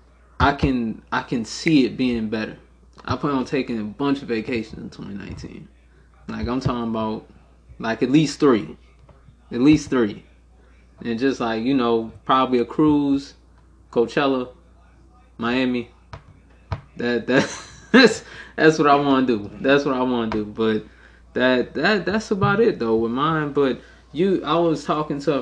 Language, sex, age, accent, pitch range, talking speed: English, male, 20-39, American, 105-145 Hz, 165 wpm